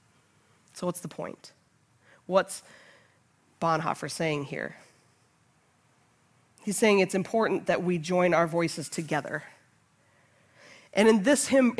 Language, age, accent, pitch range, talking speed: English, 20-39, American, 175-230 Hz, 110 wpm